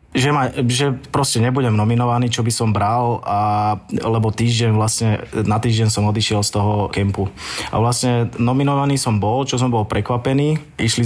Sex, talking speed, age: male, 170 wpm, 20-39